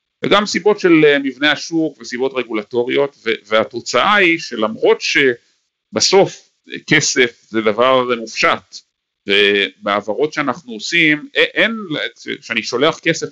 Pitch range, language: 110-160 Hz, Hebrew